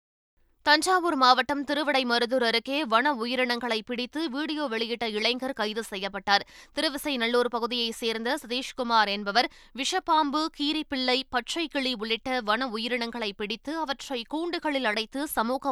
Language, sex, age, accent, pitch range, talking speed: Tamil, female, 20-39, native, 225-275 Hz, 110 wpm